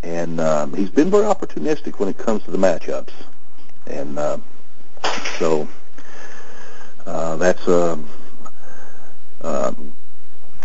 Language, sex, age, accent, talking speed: English, male, 50-69, American, 100 wpm